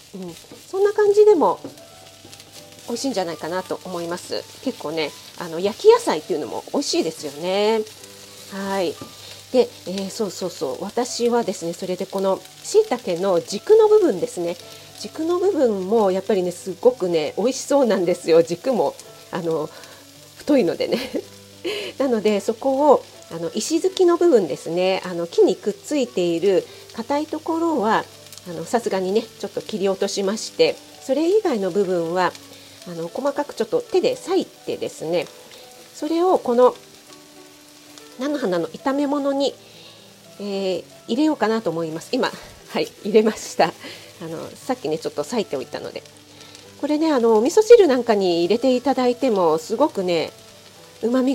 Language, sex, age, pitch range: Japanese, female, 40-59, 175-280 Hz